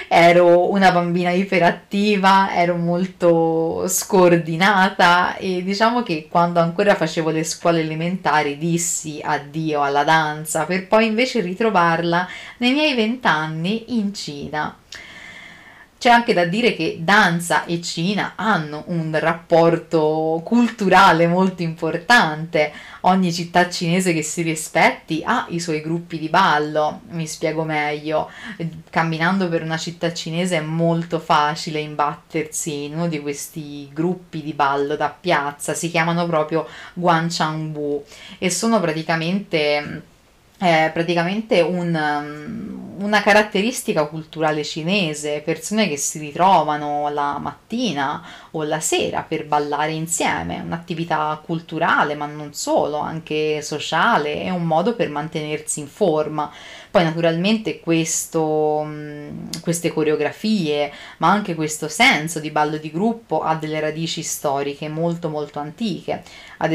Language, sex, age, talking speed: Italian, female, 30-49, 120 wpm